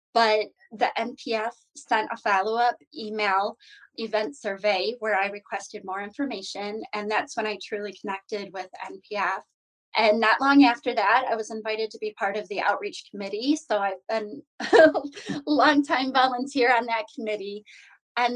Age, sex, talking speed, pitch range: 20-39, female, 155 wpm, 210-260 Hz